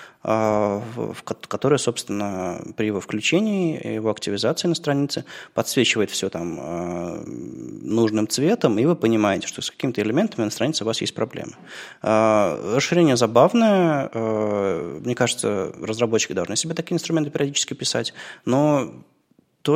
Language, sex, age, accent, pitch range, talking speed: Russian, male, 20-39, native, 105-135 Hz, 140 wpm